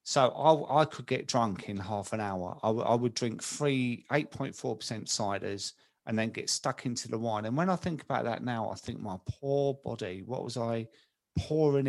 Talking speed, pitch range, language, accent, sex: 205 wpm, 110-135 Hz, English, British, male